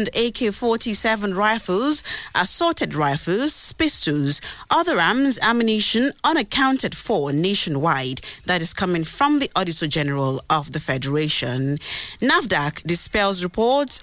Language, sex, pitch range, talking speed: English, female, 160-240 Hz, 105 wpm